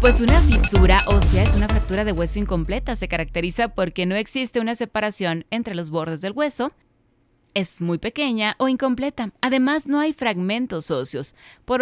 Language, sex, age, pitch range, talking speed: Spanish, female, 30-49, 165-240 Hz, 170 wpm